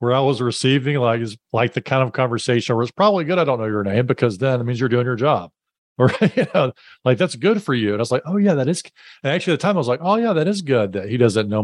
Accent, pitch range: American, 110-150 Hz